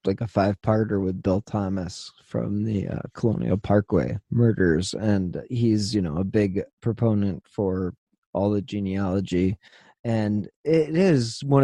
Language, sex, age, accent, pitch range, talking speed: English, male, 30-49, American, 105-130 Hz, 145 wpm